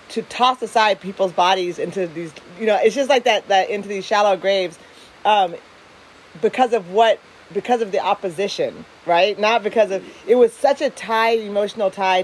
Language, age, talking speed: English, 40-59, 180 wpm